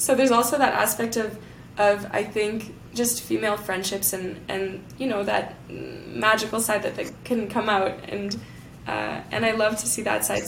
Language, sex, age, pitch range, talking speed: English, female, 10-29, 195-240 Hz, 190 wpm